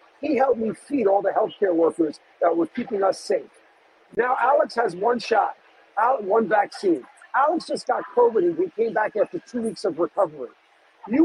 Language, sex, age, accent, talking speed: English, male, 50-69, American, 180 wpm